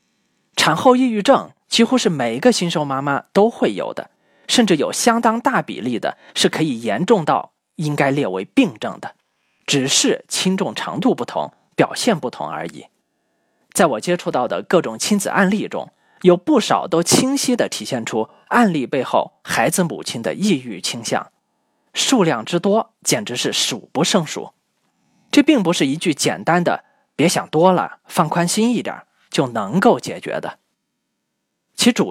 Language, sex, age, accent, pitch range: Chinese, male, 20-39, native, 175-245 Hz